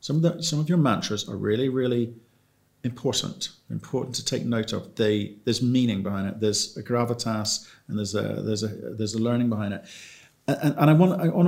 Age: 40-59